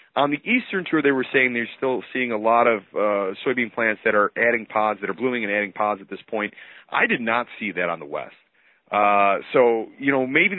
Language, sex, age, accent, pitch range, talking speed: English, male, 30-49, American, 110-145 Hz, 240 wpm